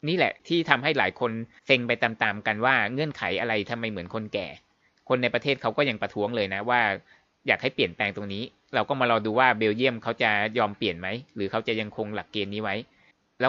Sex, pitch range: male, 110-135 Hz